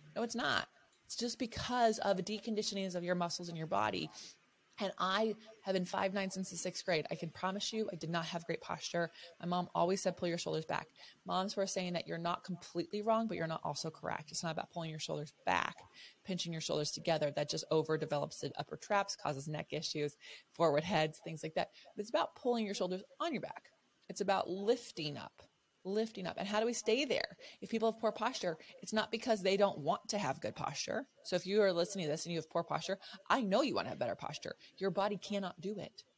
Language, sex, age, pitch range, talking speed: English, female, 20-39, 160-200 Hz, 235 wpm